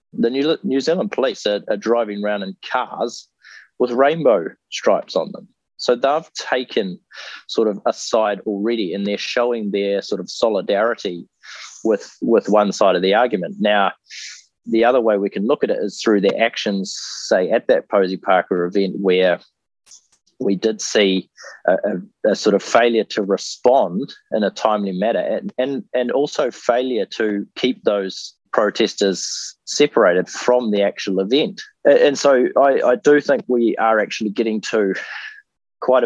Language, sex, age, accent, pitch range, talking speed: English, male, 30-49, Australian, 100-125 Hz, 165 wpm